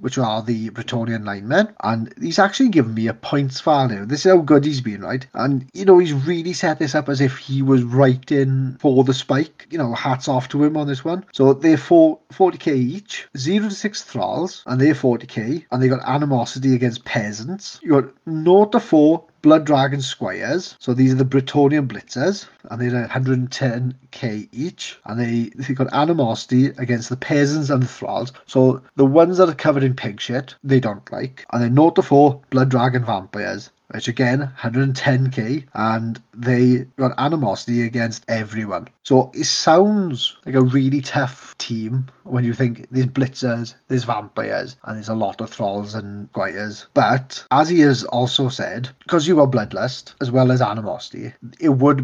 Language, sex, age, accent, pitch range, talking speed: English, male, 40-59, British, 120-145 Hz, 180 wpm